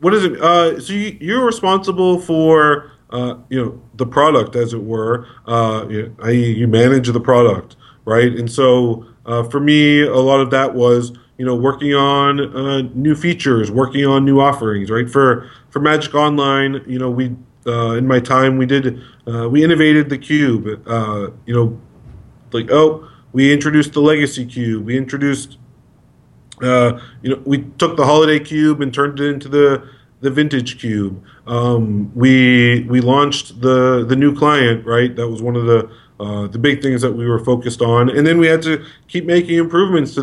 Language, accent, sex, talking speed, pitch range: English, American, male, 185 wpm, 120-145 Hz